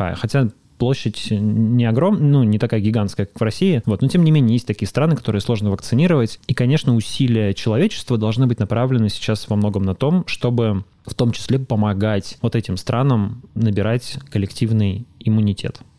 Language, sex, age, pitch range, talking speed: Russian, male, 20-39, 105-125 Hz, 170 wpm